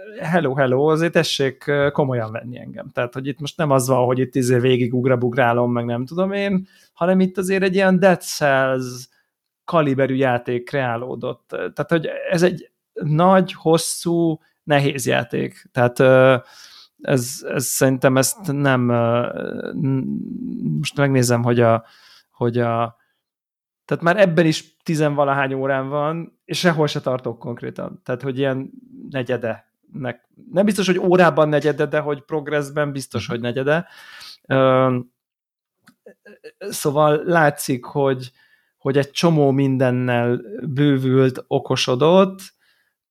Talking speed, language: 125 wpm, Hungarian